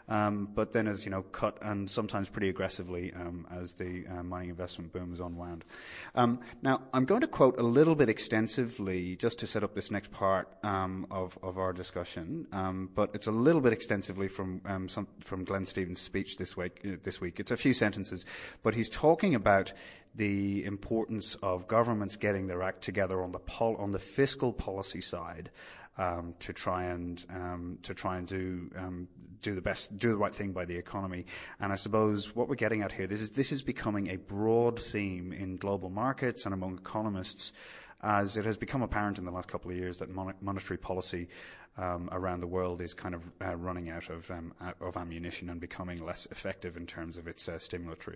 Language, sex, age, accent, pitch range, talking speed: English, male, 30-49, British, 90-105 Hz, 210 wpm